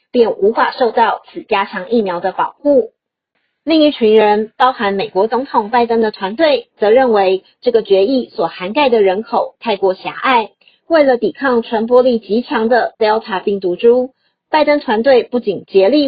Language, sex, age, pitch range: Chinese, female, 40-59, 200-265 Hz